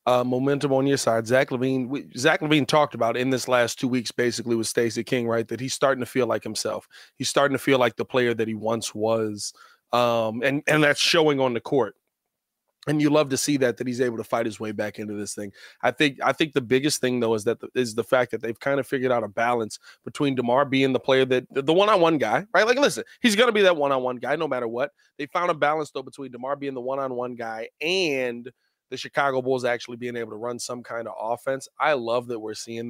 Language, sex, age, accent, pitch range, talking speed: English, male, 30-49, American, 120-145 Hz, 255 wpm